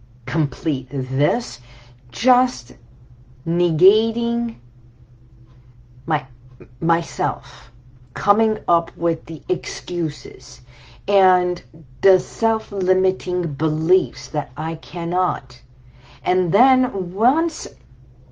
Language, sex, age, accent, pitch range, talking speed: English, female, 50-69, American, 130-205 Hz, 70 wpm